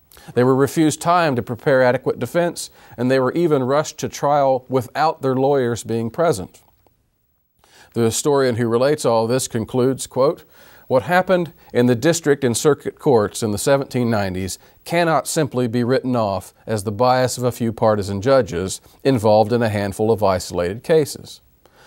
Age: 40-59